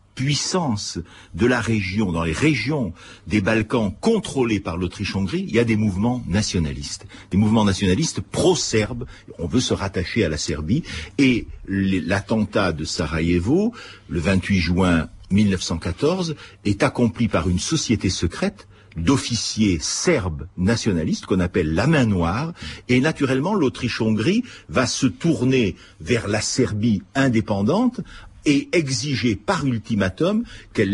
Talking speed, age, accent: 130 wpm, 60-79, French